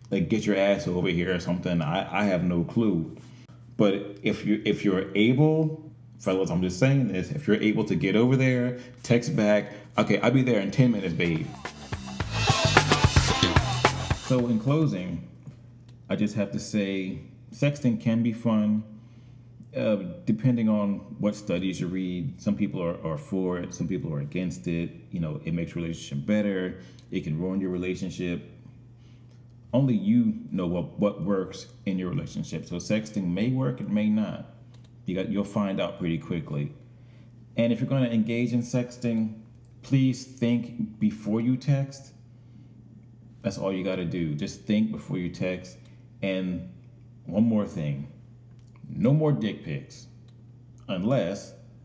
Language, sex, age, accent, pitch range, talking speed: English, male, 30-49, American, 100-120 Hz, 155 wpm